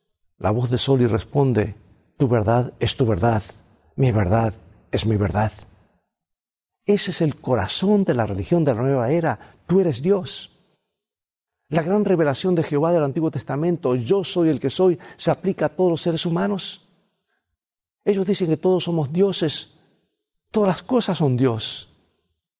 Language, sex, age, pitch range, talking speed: Spanish, male, 50-69, 125-170 Hz, 160 wpm